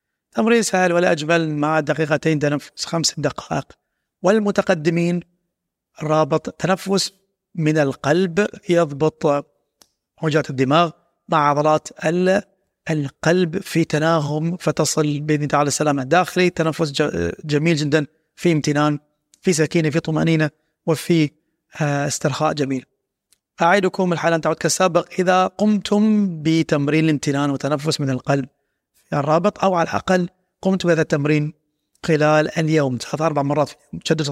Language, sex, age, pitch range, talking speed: Arabic, male, 30-49, 150-185 Hz, 115 wpm